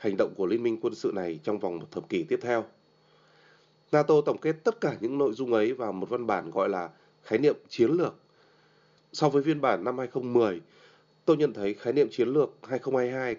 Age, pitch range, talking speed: 20-39, 125-195 Hz, 215 wpm